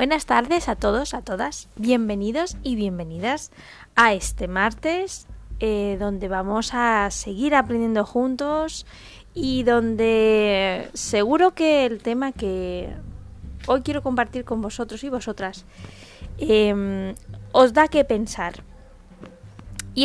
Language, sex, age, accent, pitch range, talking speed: Spanish, female, 20-39, Spanish, 210-265 Hz, 115 wpm